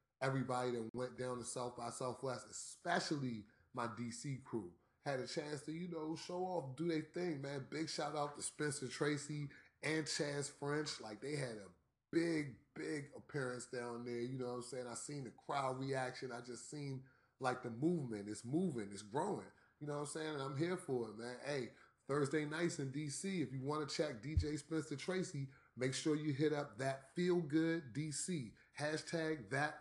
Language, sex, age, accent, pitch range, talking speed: English, male, 30-49, American, 125-155 Hz, 195 wpm